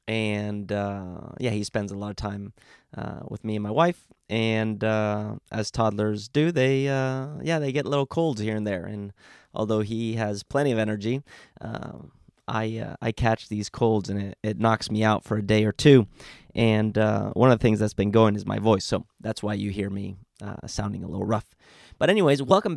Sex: male